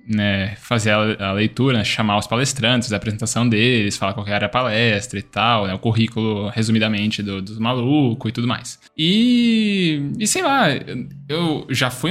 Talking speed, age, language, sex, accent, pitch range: 175 wpm, 10-29, Portuguese, male, Brazilian, 115-190 Hz